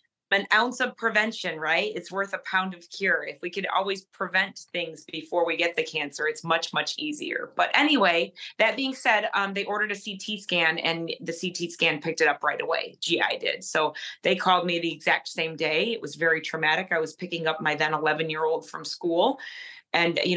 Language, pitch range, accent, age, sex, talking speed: English, 160-200 Hz, American, 30-49, female, 215 wpm